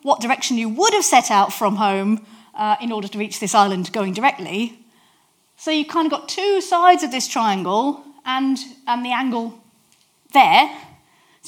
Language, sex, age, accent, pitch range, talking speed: English, female, 30-49, British, 205-270 Hz, 165 wpm